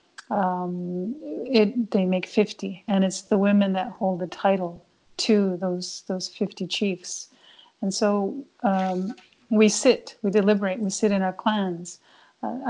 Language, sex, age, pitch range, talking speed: English, female, 40-59, 185-215 Hz, 145 wpm